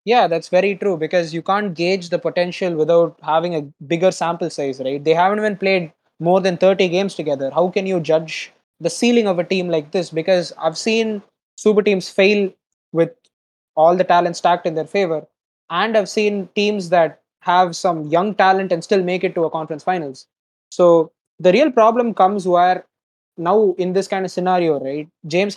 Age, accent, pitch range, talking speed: 20-39, Indian, 165-195 Hz, 190 wpm